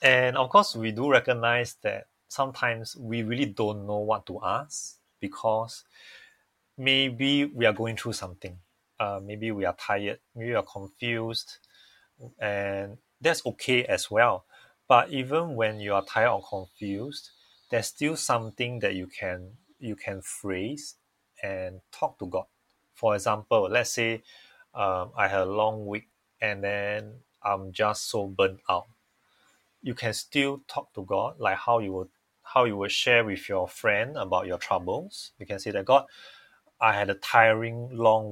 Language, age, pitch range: English, 30-49, 100-120 Hz